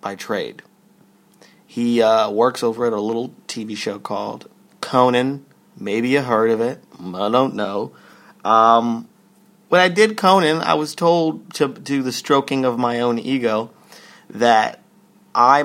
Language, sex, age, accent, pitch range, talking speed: English, male, 30-49, American, 105-130 Hz, 155 wpm